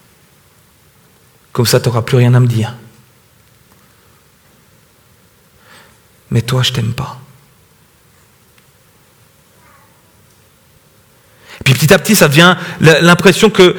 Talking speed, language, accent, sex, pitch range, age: 105 wpm, French, French, male, 145-220 Hz, 40-59